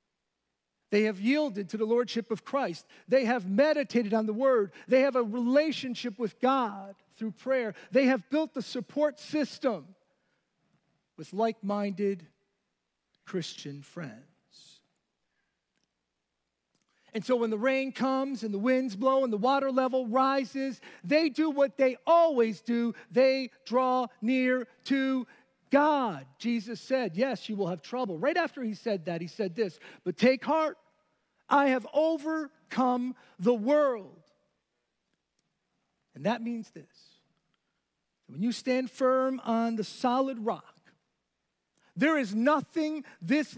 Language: English